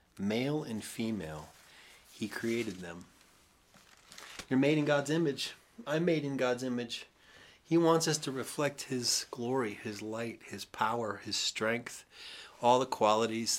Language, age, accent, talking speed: English, 40-59, American, 140 wpm